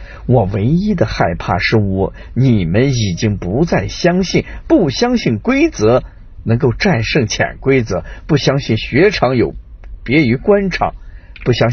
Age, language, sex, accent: 50-69, Chinese, male, native